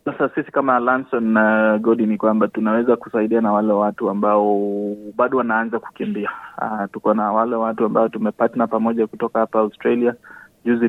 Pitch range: 105-115 Hz